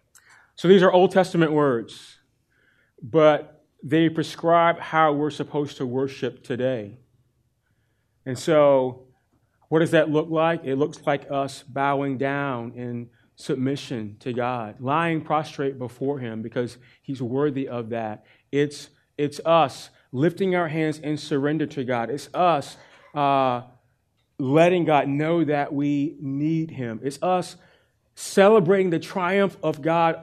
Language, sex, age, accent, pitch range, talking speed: English, male, 30-49, American, 130-160 Hz, 135 wpm